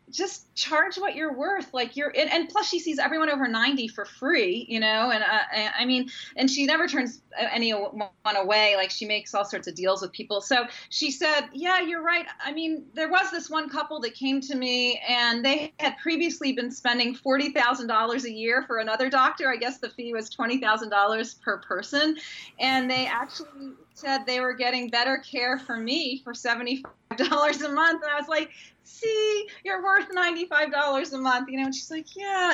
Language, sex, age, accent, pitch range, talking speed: English, female, 30-49, American, 205-290 Hz, 205 wpm